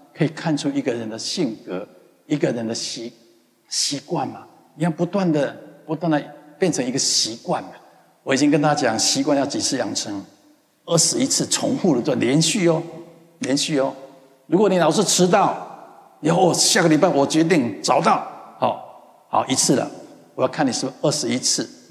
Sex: male